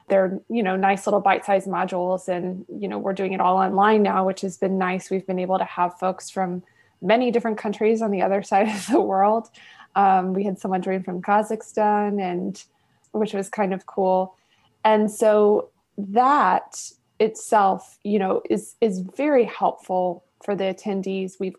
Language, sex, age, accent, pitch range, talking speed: English, female, 20-39, American, 190-230 Hz, 180 wpm